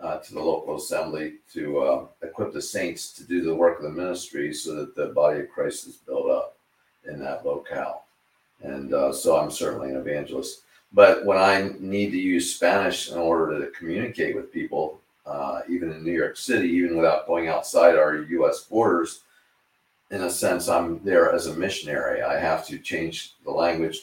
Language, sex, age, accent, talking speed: English, male, 50-69, American, 190 wpm